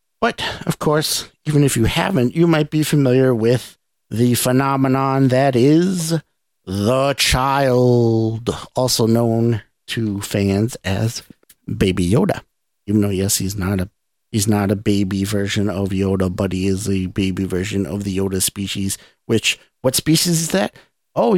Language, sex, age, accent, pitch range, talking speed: English, male, 50-69, American, 110-150 Hz, 150 wpm